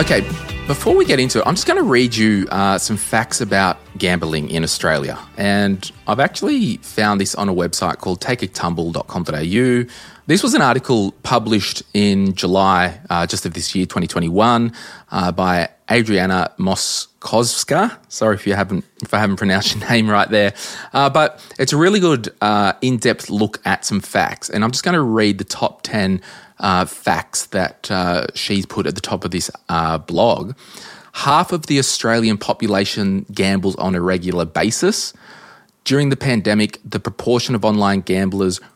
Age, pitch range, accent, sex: 20-39, 95-120 Hz, Australian, male